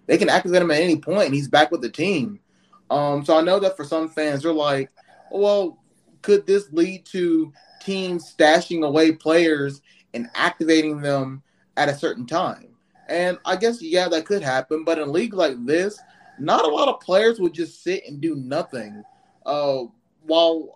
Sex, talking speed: male, 190 wpm